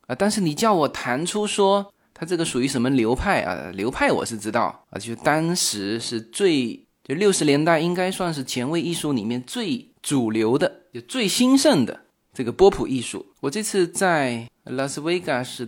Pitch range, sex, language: 125-205 Hz, male, Chinese